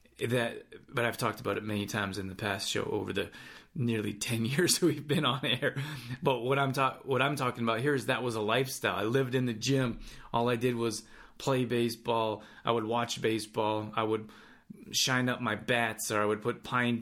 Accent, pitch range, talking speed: American, 110-130 Hz, 215 wpm